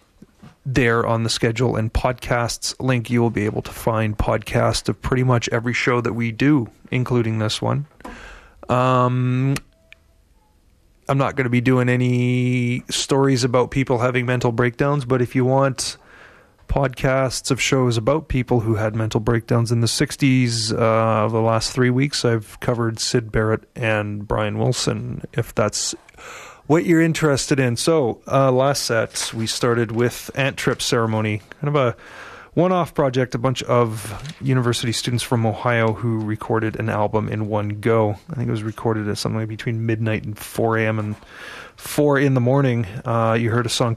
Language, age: English, 30-49